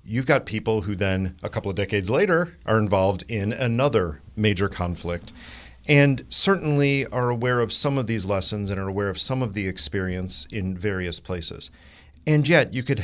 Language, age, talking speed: English, 40-59, 185 wpm